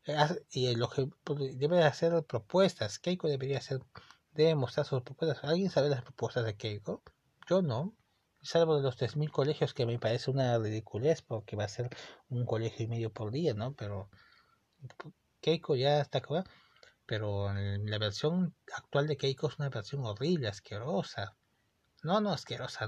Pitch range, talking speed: 115-150 Hz, 160 wpm